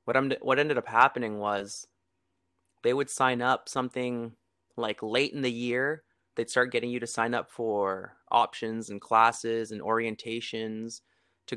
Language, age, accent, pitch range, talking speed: English, 20-39, American, 105-125 Hz, 160 wpm